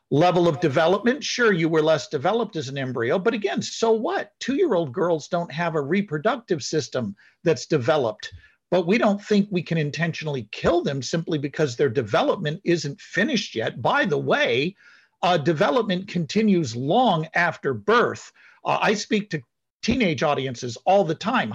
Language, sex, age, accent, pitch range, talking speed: English, male, 50-69, American, 150-205 Hz, 160 wpm